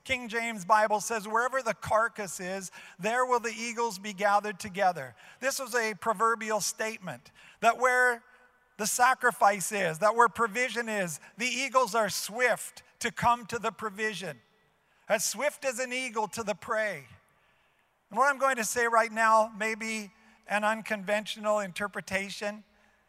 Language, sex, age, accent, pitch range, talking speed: English, male, 50-69, American, 200-235 Hz, 150 wpm